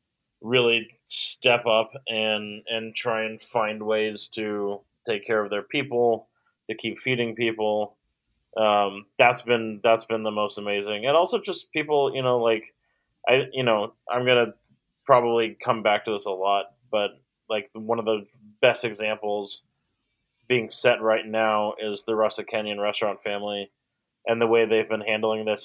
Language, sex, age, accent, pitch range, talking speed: English, male, 20-39, American, 105-120 Hz, 165 wpm